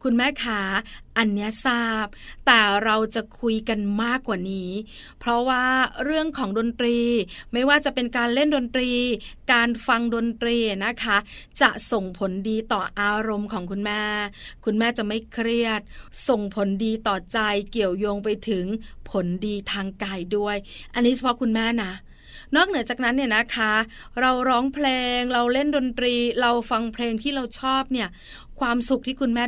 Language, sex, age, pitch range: Thai, female, 20-39, 210-255 Hz